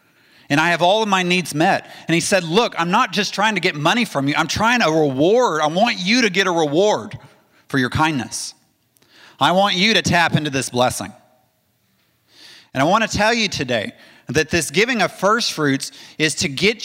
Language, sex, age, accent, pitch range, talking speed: English, male, 30-49, American, 125-180 Hz, 205 wpm